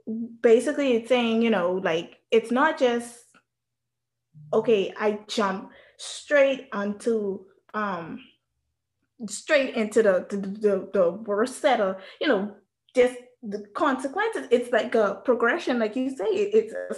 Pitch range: 210-275 Hz